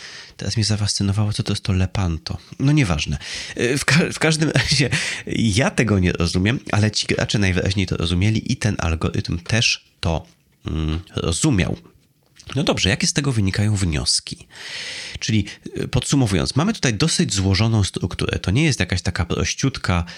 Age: 30-49